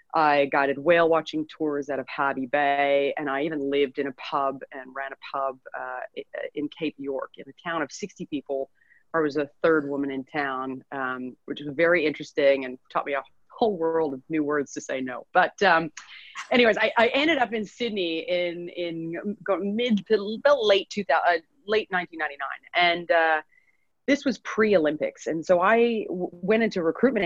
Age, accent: 30-49, American